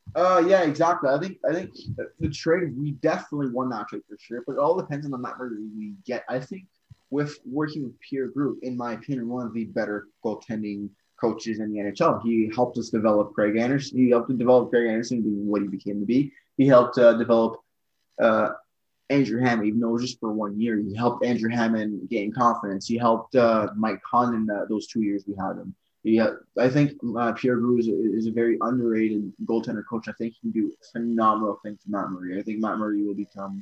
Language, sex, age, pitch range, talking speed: English, male, 20-39, 105-125 Hz, 225 wpm